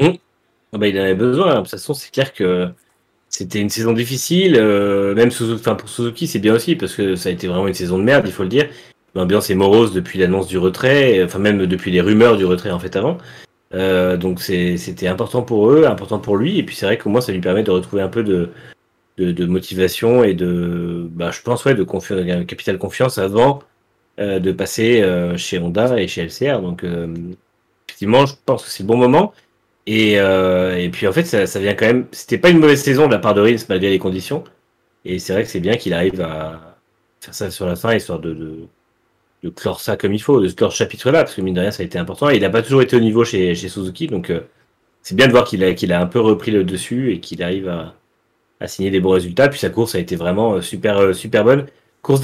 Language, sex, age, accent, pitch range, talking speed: French, male, 30-49, French, 90-115 Hz, 250 wpm